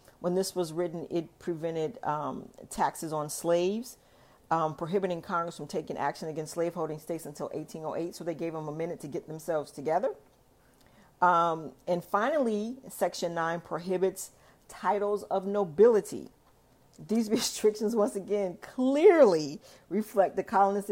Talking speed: 140 wpm